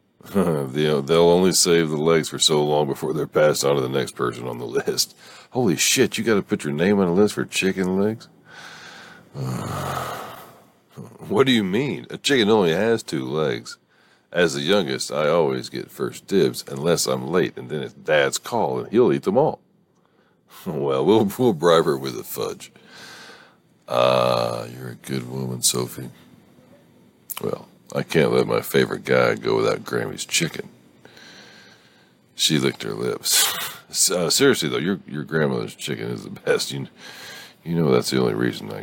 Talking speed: 175 wpm